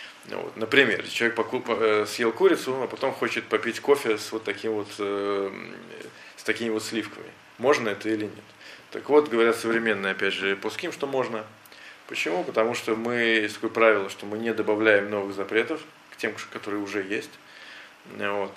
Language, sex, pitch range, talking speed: Russian, male, 105-120 Hz, 155 wpm